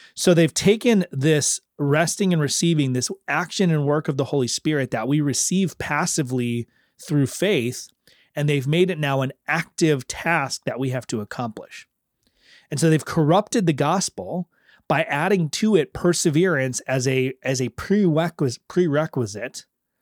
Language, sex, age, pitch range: English, male, 30-49, 125-160 Hz